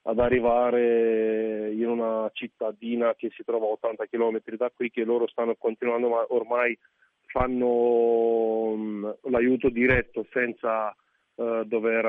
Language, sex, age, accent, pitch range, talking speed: Italian, male, 30-49, native, 110-125 Hz, 125 wpm